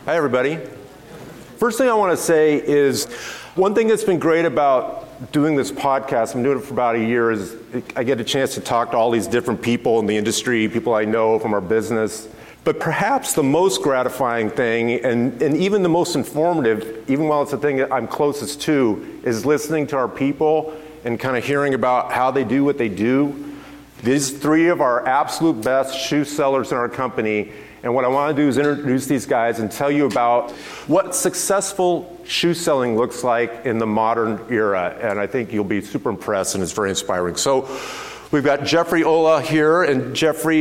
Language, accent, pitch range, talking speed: English, American, 120-155 Hz, 205 wpm